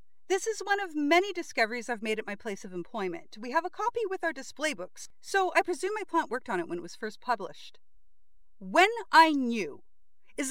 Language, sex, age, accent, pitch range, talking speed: English, female, 40-59, American, 230-345 Hz, 215 wpm